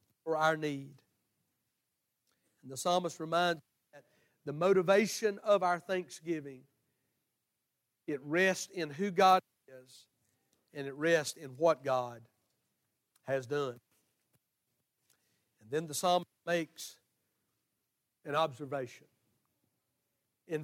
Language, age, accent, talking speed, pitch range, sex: English, 60-79, American, 100 wpm, 135-185 Hz, male